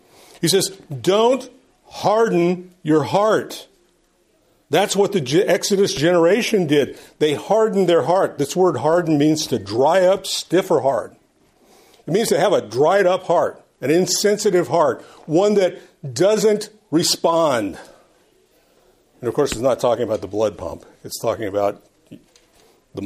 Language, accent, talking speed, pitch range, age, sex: English, American, 145 wpm, 155-215 Hz, 50-69, male